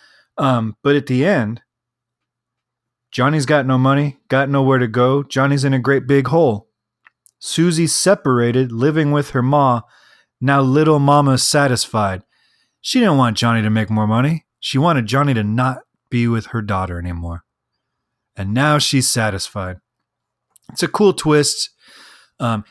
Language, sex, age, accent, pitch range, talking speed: English, male, 30-49, American, 115-145 Hz, 150 wpm